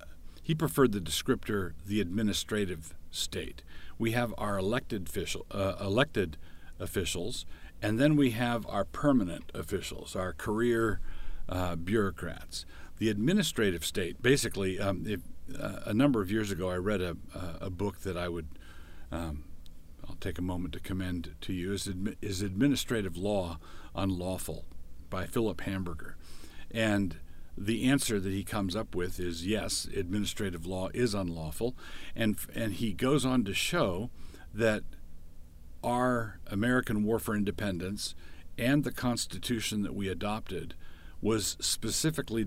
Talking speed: 140 wpm